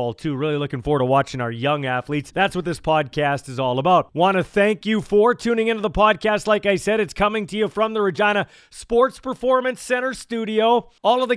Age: 40-59